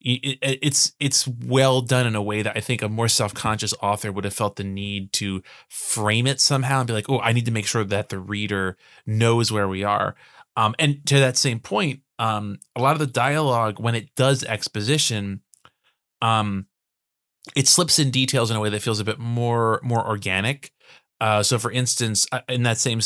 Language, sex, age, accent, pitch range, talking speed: English, male, 20-39, American, 105-130 Hz, 200 wpm